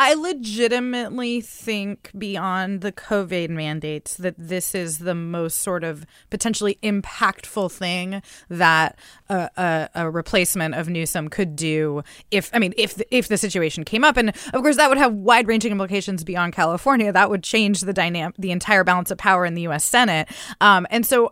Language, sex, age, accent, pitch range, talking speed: English, female, 20-39, American, 185-230 Hz, 180 wpm